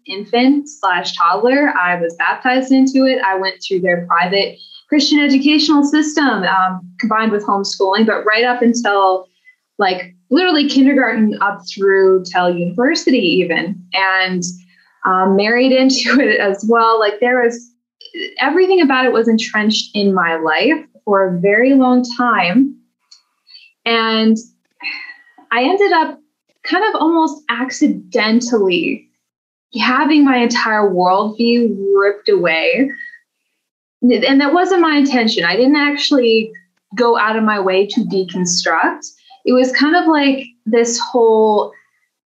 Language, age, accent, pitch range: English, 20-39, American, 195-275 Hz